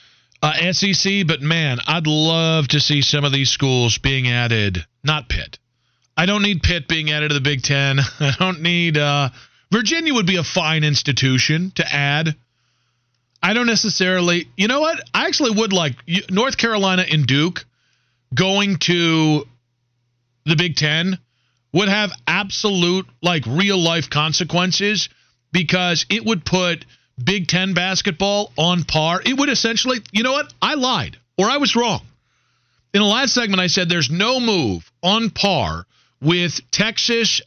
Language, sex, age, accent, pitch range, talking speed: English, male, 40-59, American, 125-190 Hz, 155 wpm